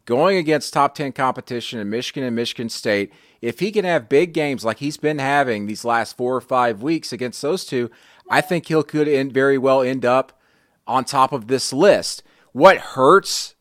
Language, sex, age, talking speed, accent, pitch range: English, male, 30-49, 190 wpm, American, 120-155 Hz